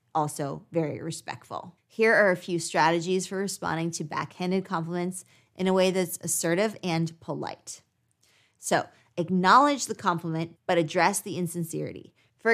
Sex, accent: female, American